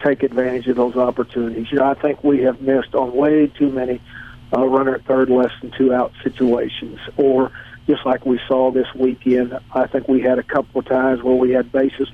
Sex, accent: male, American